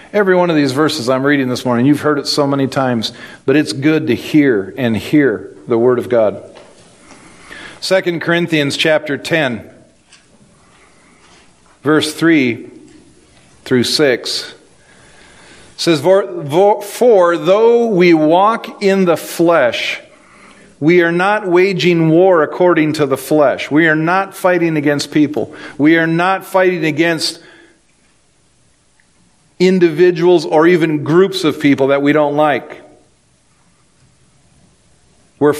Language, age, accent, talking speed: English, 50-69, American, 125 wpm